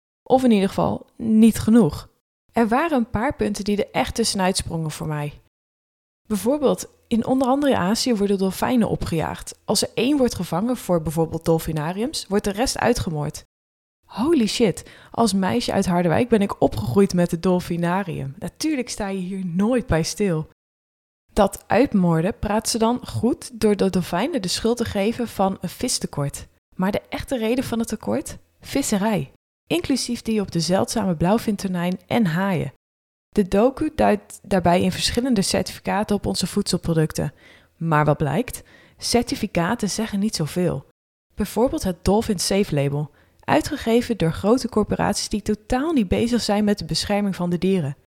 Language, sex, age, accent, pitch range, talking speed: Dutch, female, 20-39, Dutch, 170-230 Hz, 155 wpm